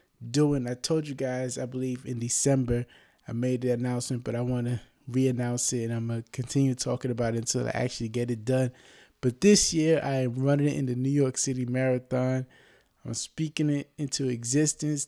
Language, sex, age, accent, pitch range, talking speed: English, male, 20-39, American, 125-140 Hz, 195 wpm